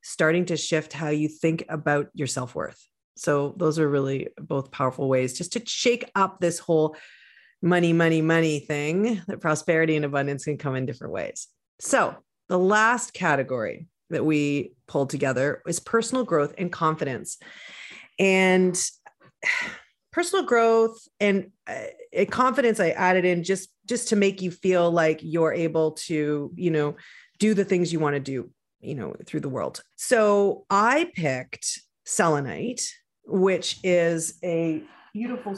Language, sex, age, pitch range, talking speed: English, female, 40-59, 155-210 Hz, 150 wpm